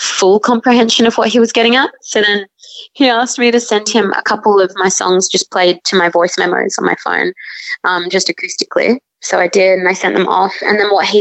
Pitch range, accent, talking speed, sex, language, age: 185-215 Hz, Australian, 240 wpm, female, English, 20-39